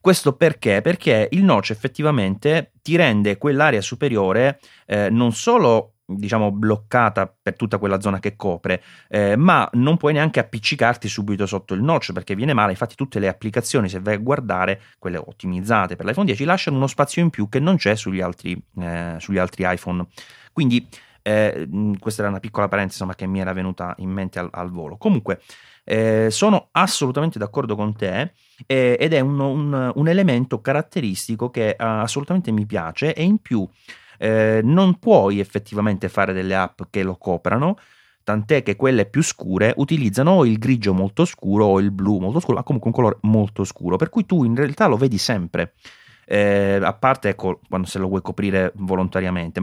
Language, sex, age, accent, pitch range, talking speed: Italian, male, 30-49, native, 95-140 Hz, 180 wpm